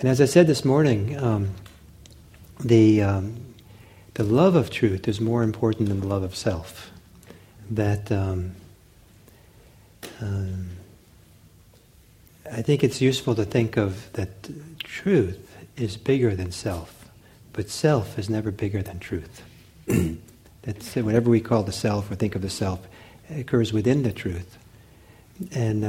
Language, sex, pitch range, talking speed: English, male, 95-115 Hz, 140 wpm